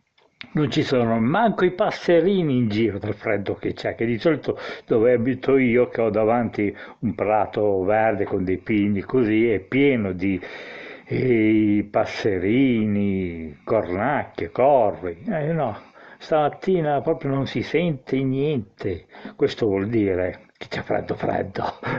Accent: native